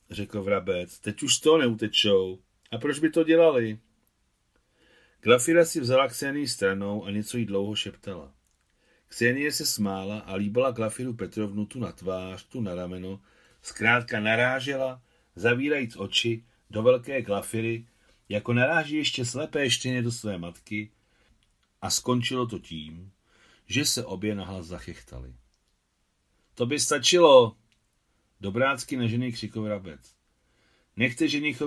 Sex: male